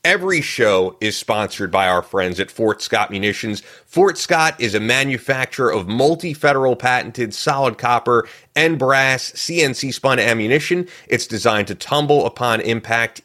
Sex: male